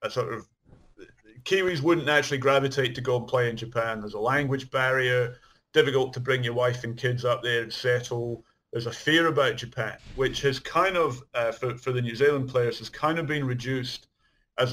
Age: 30-49